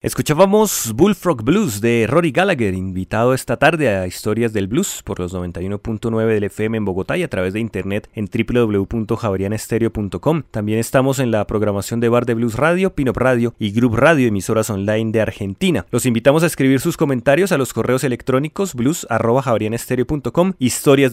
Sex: male